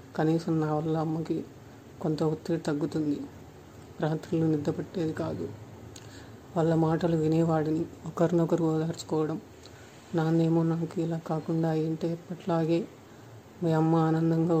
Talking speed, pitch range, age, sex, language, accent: 100 wpm, 155-170 Hz, 30-49, female, Telugu, native